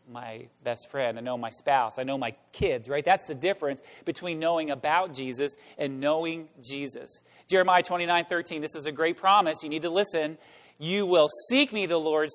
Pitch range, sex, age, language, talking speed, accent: 145-210 Hz, male, 40-59, English, 195 wpm, American